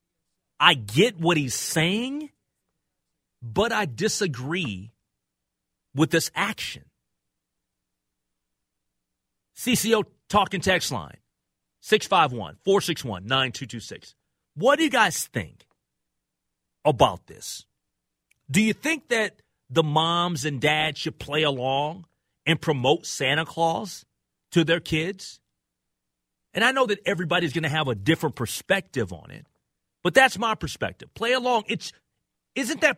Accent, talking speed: American, 115 wpm